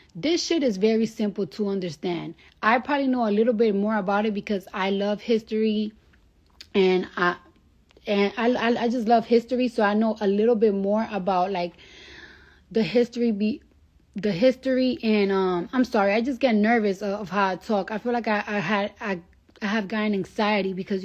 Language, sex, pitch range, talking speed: English, female, 200-245 Hz, 190 wpm